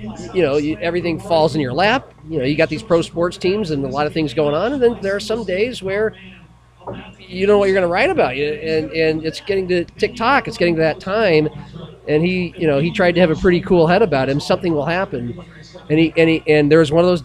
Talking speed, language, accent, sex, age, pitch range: 270 wpm, English, American, male, 40-59, 150-195 Hz